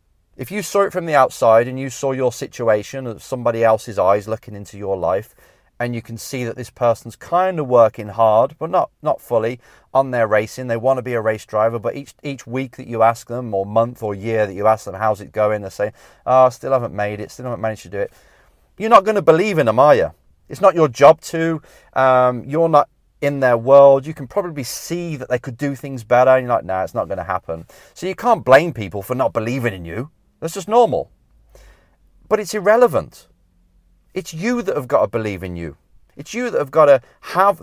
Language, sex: English, male